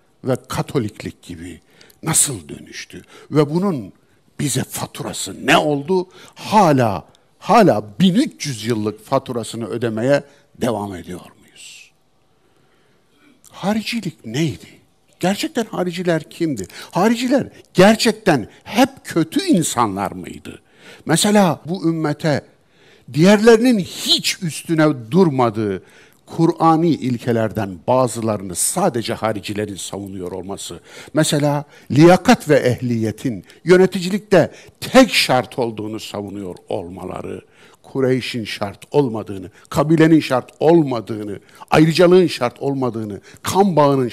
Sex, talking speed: male, 90 wpm